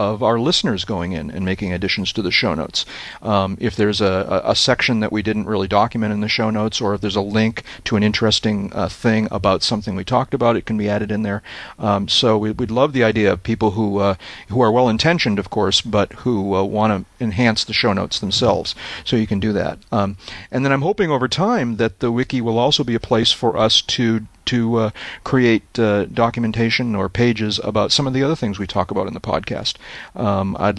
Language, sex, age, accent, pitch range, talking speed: English, male, 40-59, American, 100-120 Hz, 230 wpm